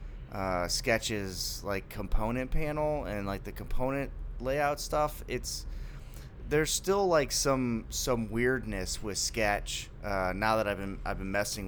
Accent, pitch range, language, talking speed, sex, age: American, 100-130 Hz, English, 145 wpm, male, 30-49